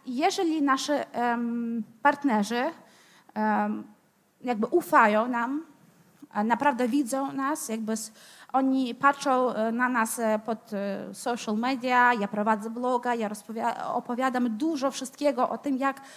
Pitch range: 225-295 Hz